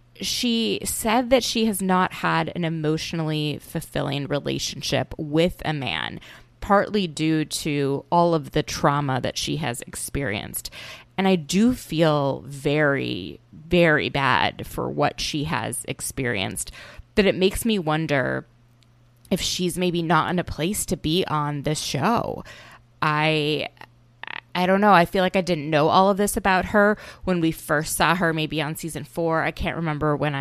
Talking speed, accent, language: 160 wpm, American, English